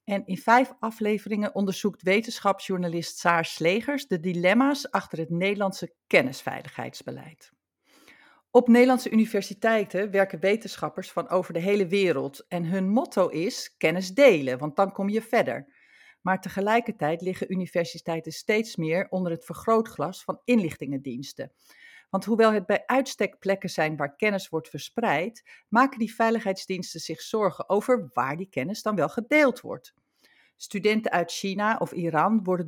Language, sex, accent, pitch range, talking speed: Dutch, female, Dutch, 170-215 Hz, 140 wpm